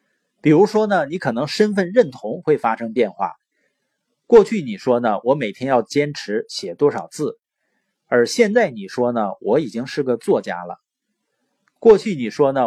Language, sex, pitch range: Chinese, male, 135-205 Hz